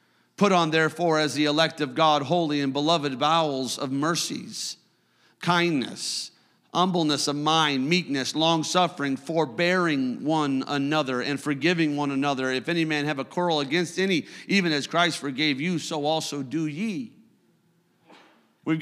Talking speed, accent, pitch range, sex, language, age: 145 wpm, American, 155-215 Hz, male, English, 50-69